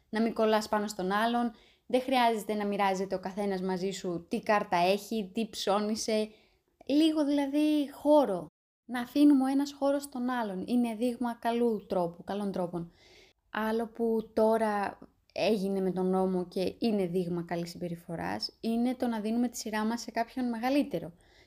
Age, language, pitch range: 20-39, Greek, 190-245 Hz